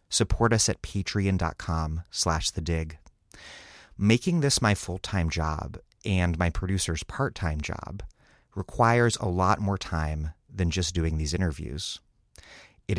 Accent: American